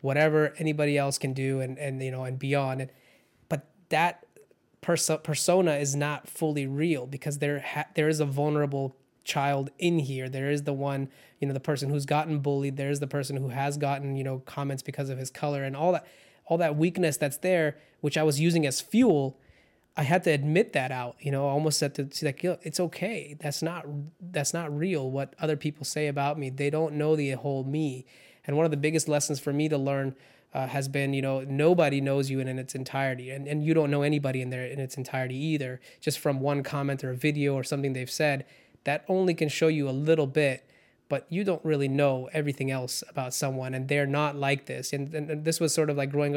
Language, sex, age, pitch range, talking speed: English, male, 20-39, 135-155 Hz, 230 wpm